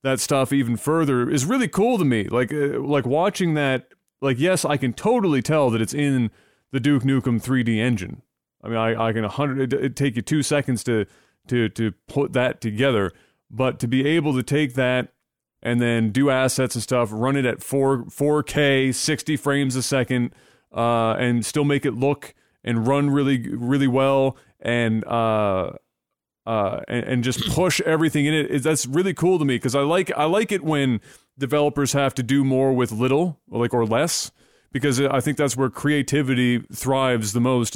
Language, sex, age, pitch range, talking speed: English, male, 30-49, 115-140 Hz, 195 wpm